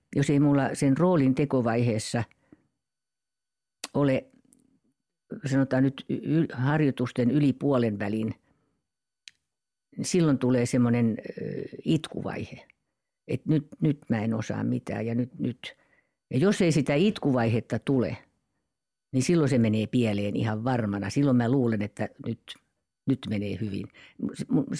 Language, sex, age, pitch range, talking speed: Finnish, female, 50-69, 115-145 Hz, 125 wpm